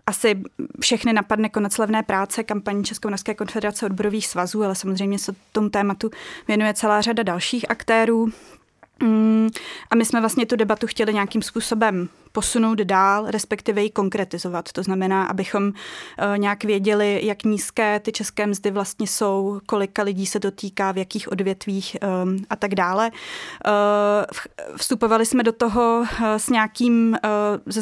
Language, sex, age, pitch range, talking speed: English, female, 20-39, 200-225 Hz, 135 wpm